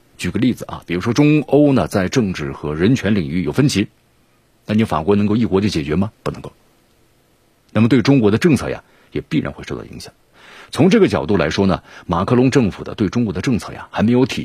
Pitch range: 95-125 Hz